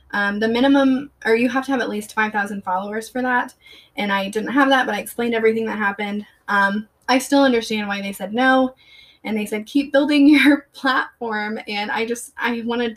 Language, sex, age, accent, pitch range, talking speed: English, female, 20-39, American, 205-245 Hz, 210 wpm